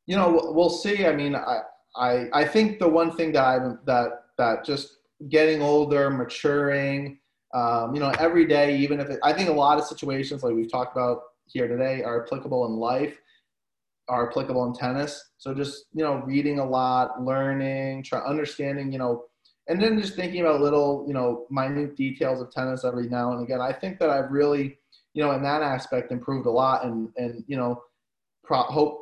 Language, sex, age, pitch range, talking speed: English, male, 20-39, 120-145 Hz, 195 wpm